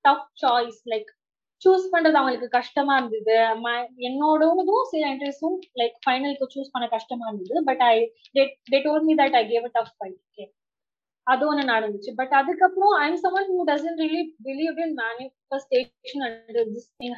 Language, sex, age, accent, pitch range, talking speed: English, female, 20-39, Indian, 245-325 Hz, 170 wpm